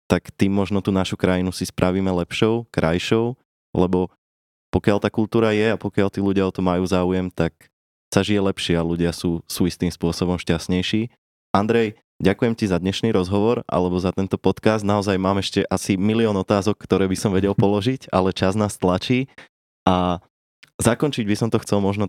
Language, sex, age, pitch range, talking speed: Slovak, male, 20-39, 90-105 Hz, 180 wpm